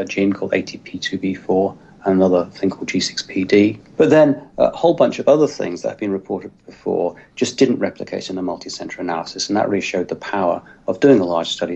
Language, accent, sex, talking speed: English, British, male, 205 wpm